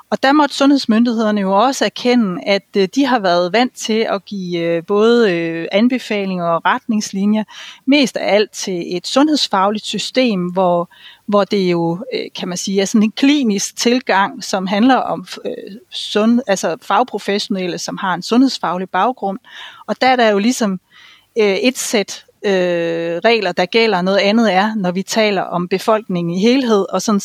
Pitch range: 185-230 Hz